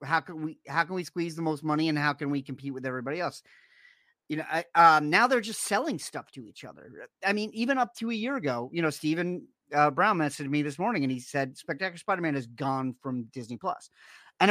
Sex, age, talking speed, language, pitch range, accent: male, 40-59, 240 wpm, English, 145-210 Hz, American